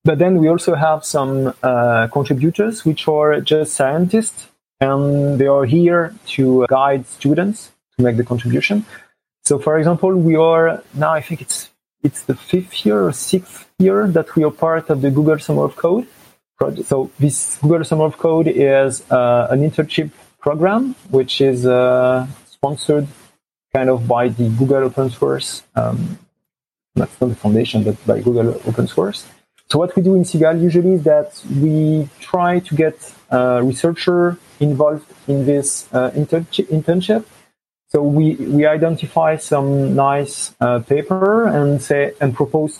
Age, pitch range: 40-59, 130-160 Hz